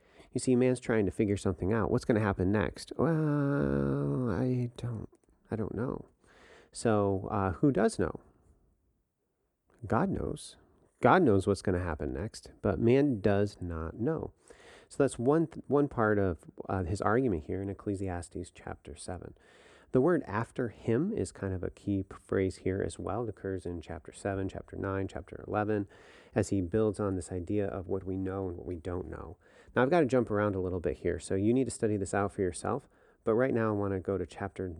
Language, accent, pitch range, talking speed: English, American, 95-120 Hz, 205 wpm